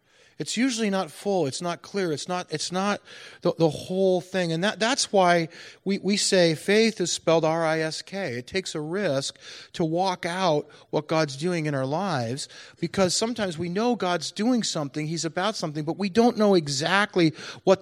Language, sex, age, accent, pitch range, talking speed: English, male, 40-59, American, 125-180 Hz, 185 wpm